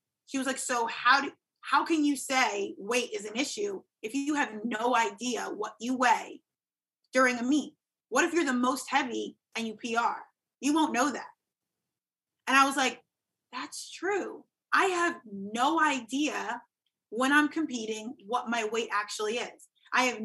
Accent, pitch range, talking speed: American, 230-285 Hz, 170 wpm